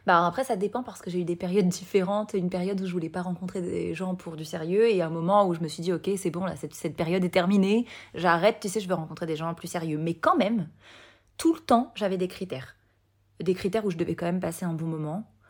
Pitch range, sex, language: 165-200 Hz, female, French